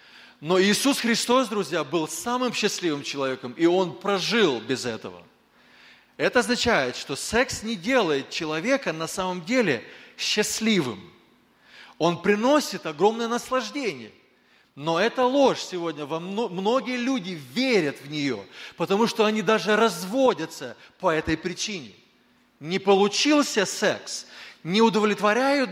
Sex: male